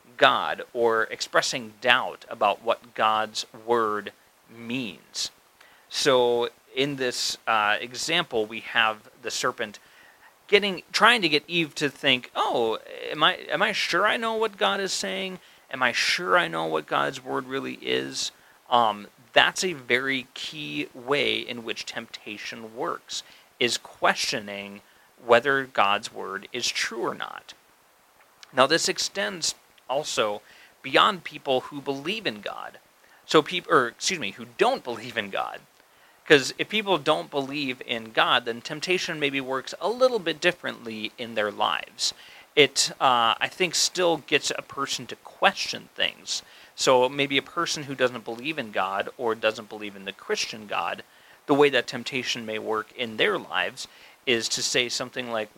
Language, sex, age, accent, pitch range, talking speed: English, male, 40-59, American, 115-160 Hz, 160 wpm